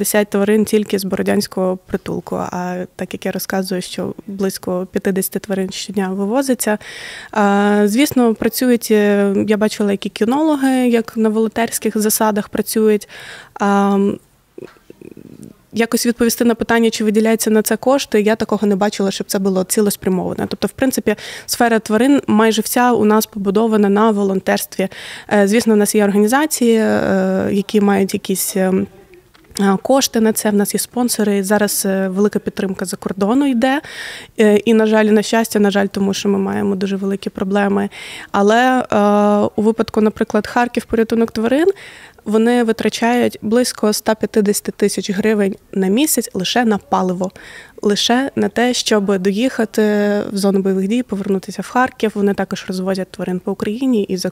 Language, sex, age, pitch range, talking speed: Ukrainian, female, 20-39, 195-225 Hz, 145 wpm